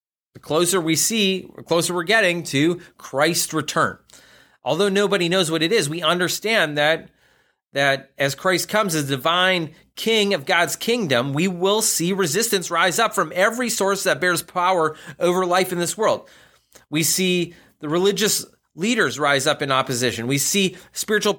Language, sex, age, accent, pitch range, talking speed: English, male, 30-49, American, 140-190 Hz, 170 wpm